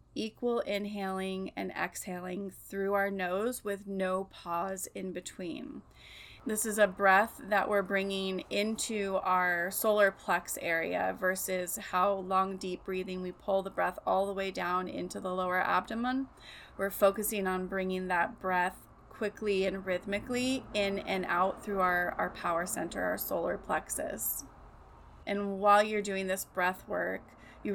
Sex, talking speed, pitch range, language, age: female, 150 wpm, 185-205 Hz, English, 30-49